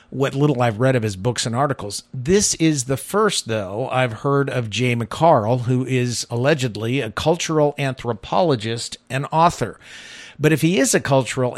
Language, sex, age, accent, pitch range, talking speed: English, male, 50-69, American, 120-155 Hz, 170 wpm